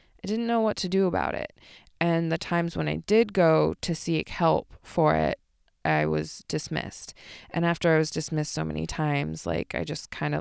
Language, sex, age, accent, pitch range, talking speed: English, female, 20-39, American, 165-245 Hz, 200 wpm